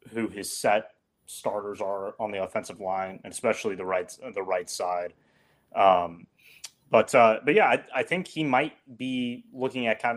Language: English